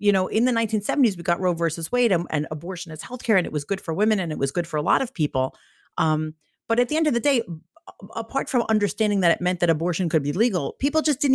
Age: 40-59